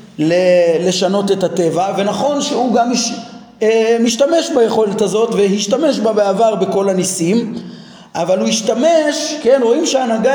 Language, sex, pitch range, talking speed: Hebrew, male, 205-270 Hz, 115 wpm